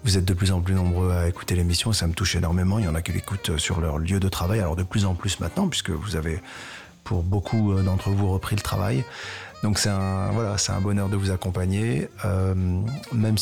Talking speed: 230 wpm